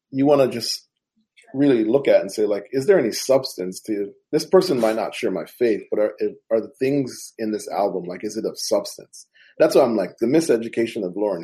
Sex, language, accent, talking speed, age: male, English, American, 225 wpm, 30-49